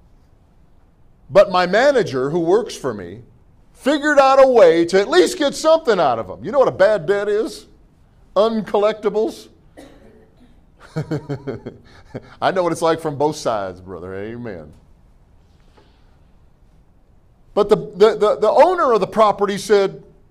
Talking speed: 140 wpm